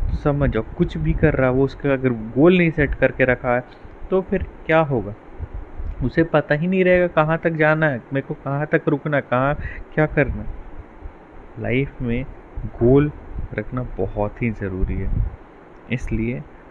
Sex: male